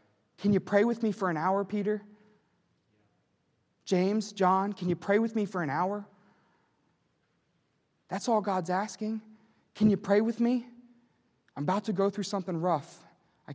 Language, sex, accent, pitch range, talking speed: English, male, American, 140-195 Hz, 160 wpm